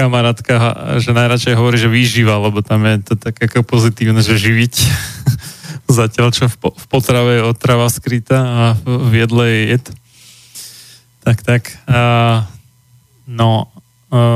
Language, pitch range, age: Slovak, 115-125 Hz, 20-39